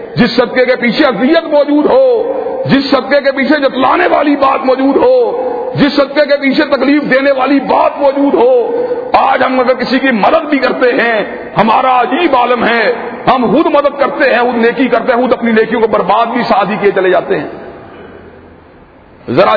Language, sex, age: Urdu, male, 50-69